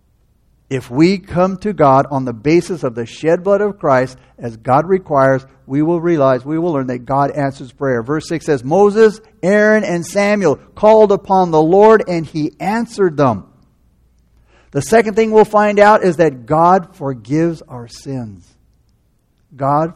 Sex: male